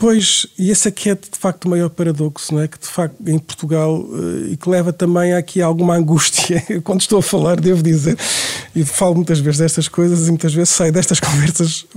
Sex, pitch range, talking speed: male, 145-180 Hz, 220 wpm